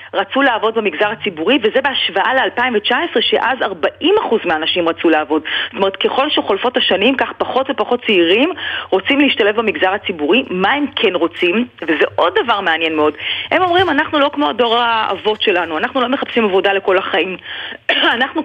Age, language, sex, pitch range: 40-59, Hebrew, female, 195-290 Hz